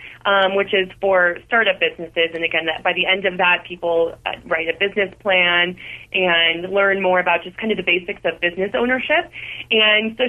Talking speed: 185 wpm